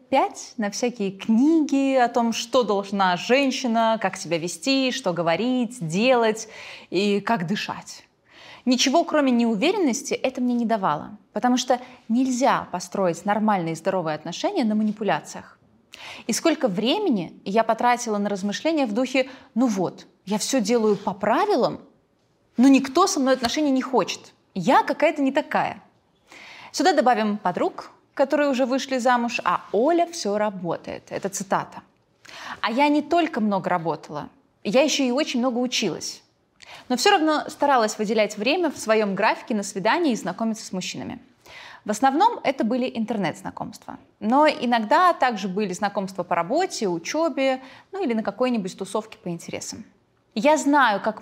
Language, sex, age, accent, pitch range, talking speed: Russian, female, 20-39, native, 205-270 Hz, 145 wpm